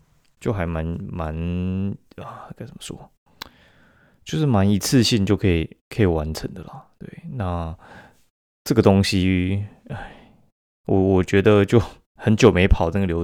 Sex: male